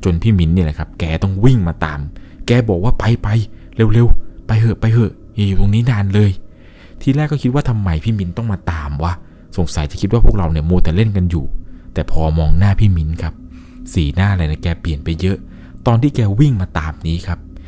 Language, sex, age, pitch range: Thai, male, 20-39, 80-105 Hz